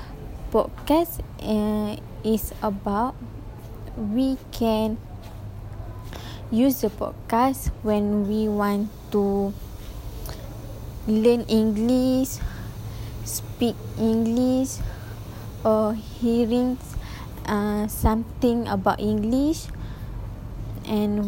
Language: English